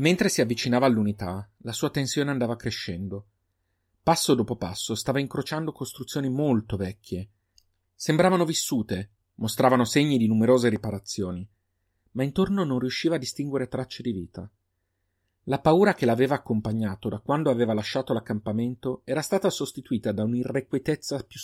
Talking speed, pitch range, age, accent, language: 135 wpm, 100-135 Hz, 40-59, native, Italian